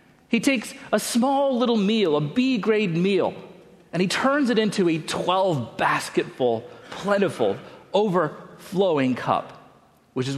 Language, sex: English, male